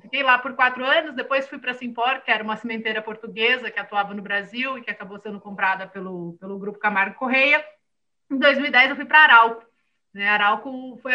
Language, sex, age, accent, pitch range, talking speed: Portuguese, female, 30-49, Brazilian, 210-265 Hz, 215 wpm